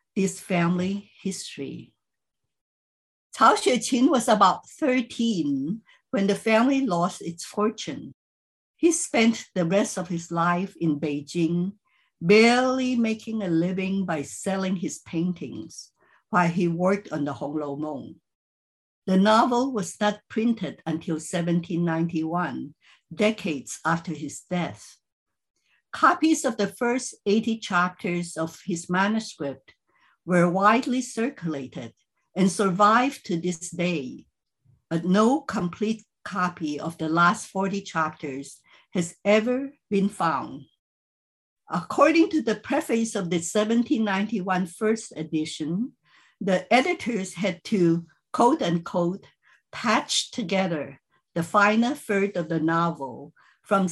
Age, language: 60-79, English